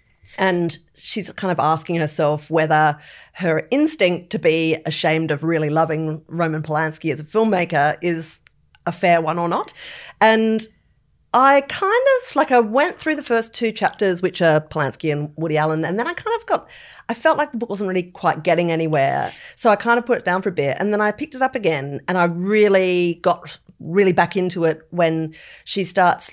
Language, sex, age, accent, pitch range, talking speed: English, female, 40-59, Australian, 155-190 Hz, 200 wpm